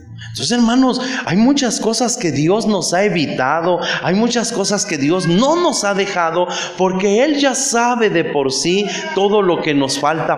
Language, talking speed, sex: Spanish, 180 wpm, male